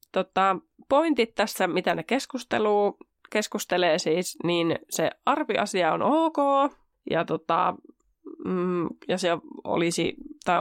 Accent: native